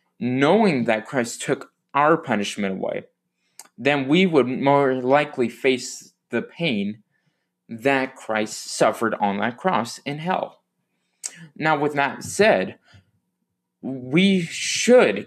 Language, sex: English, male